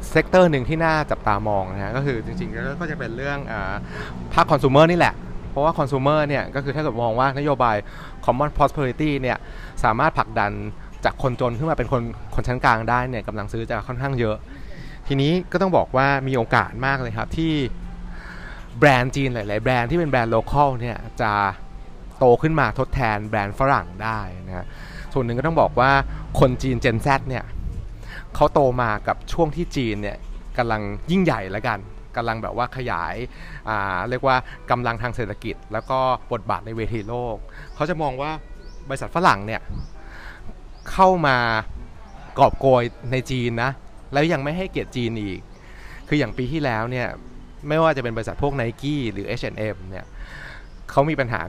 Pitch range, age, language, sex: 110-140 Hz, 30-49, Thai, male